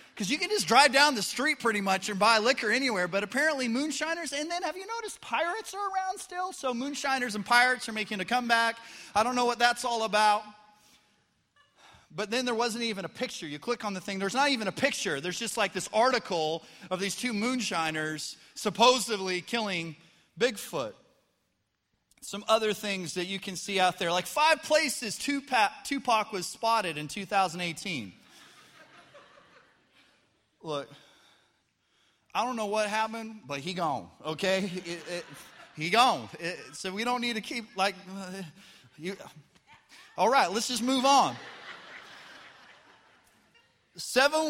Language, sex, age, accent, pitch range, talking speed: English, male, 30-49, American, 190-260 Hz, 160 wpm